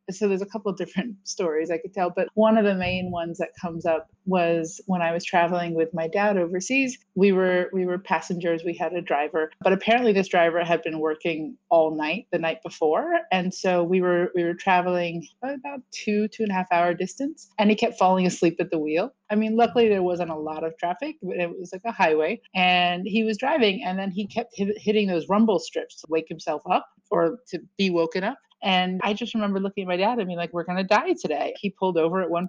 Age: 30-49